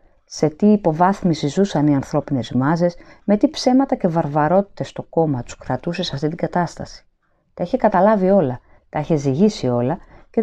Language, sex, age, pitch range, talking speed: Greek, female, 30-49, 135-195 Hz, 165 wpm